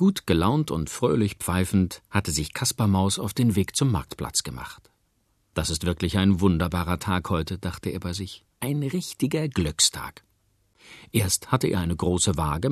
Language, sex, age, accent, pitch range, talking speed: German, male, 50-69, German, 90-125 Hz, 165 wpm